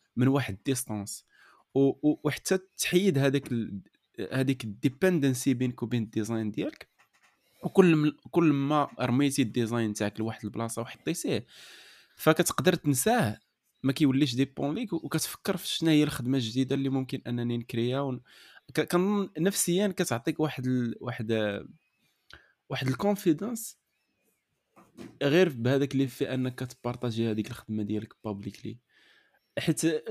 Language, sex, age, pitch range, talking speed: Arabic, male, 20-39, 120-150 Hz, 125 wpm